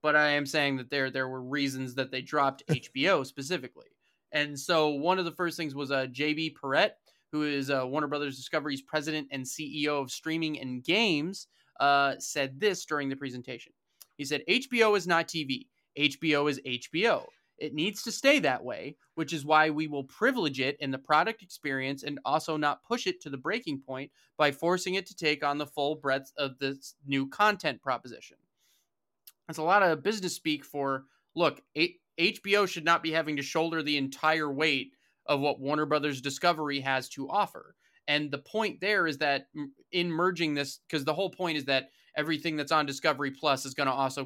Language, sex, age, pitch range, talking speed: English, male, 20-39, 140-165 Hz, 195 wpm